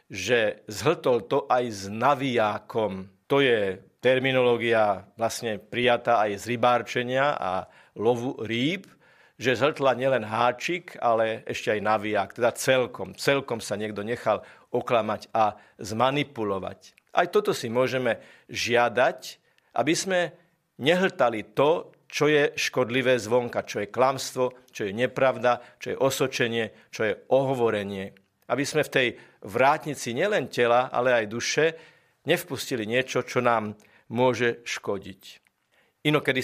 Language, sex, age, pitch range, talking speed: Slovak, male, 50-69, 115-140 Hz, 125 wpm